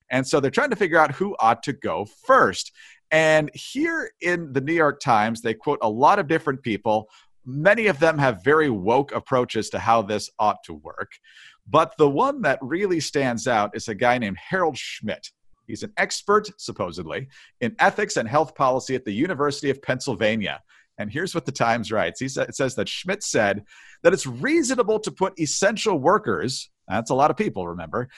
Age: 50-69